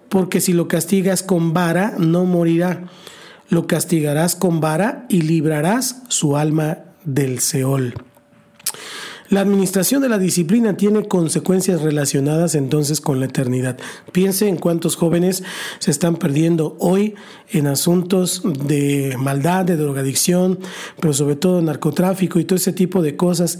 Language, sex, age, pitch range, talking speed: Spanish, male, 40-59, 155-190 Hz, 135 wpm